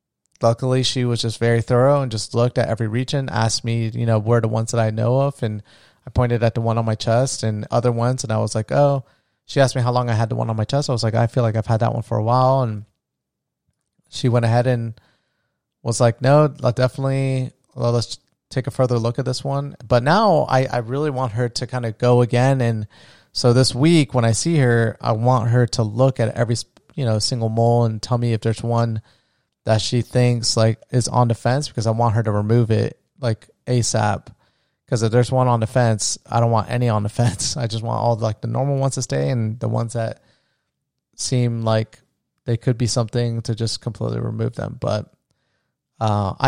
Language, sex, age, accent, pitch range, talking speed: English, male, 30-49, American, 115-130 Hz, 225 wpm